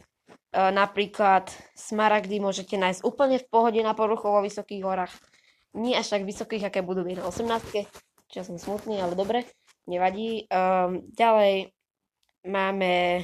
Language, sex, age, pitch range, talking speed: Slovak, female, 20-39, 180-210 Hz, 135 wpm